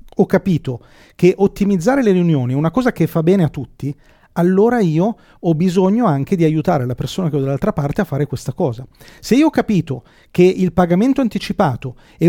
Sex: male